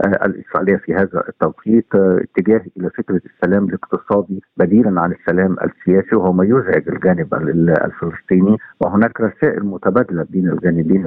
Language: Arabic